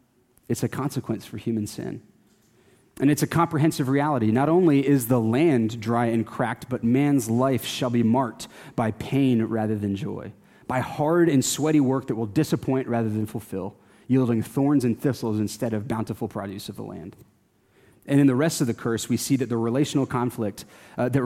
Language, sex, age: English, male, 30-49